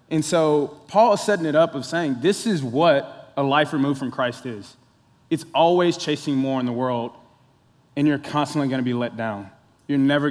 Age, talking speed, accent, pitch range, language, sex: 20-39, 205 wpm, American, 130-155 Hz, English, male